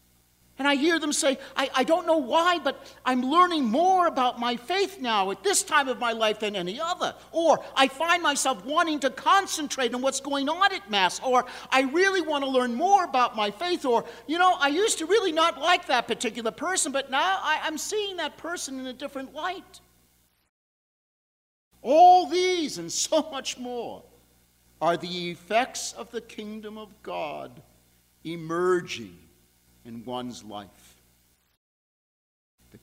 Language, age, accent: English, 50-69, American